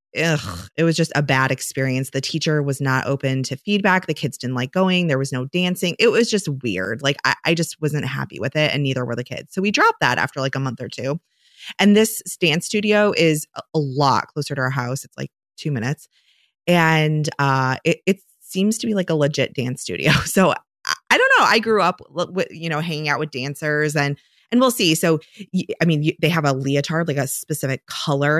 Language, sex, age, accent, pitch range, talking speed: English, female, 20-39, American, 135-170 Hz, 225 wpm